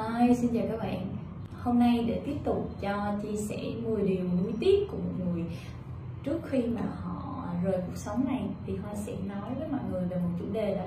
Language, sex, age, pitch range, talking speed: Vietnamese, female, 10-29, 185-245 Hz, 220 wpm